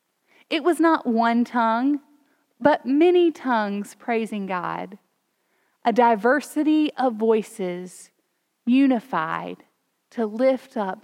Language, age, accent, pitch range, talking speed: English, 30-49, American, 210-270 Hz, 100 wpm